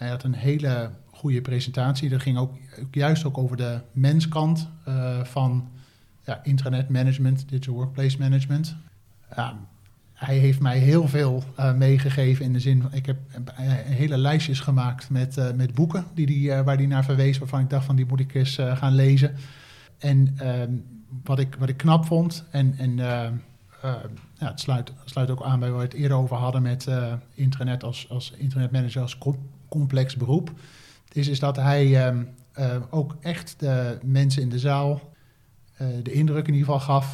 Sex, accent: male, Dutch